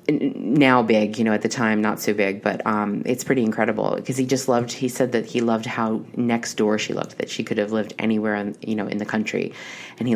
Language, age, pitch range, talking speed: English, 30-49, 105-125 Hz, 255 wpm